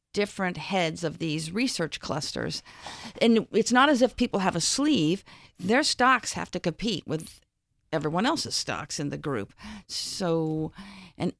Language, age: English, 50-69